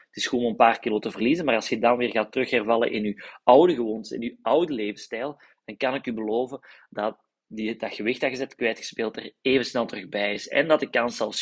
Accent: Belgian